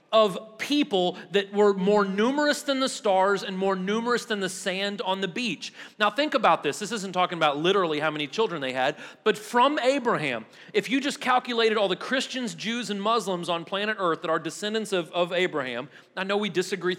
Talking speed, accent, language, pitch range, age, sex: 205 wpm, American, English, 180-235 Hz, 40-59, male